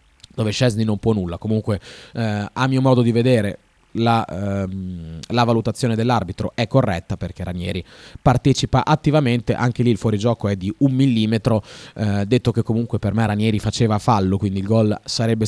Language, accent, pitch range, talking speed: Italian, native, 100-125 Hz, 170 wpm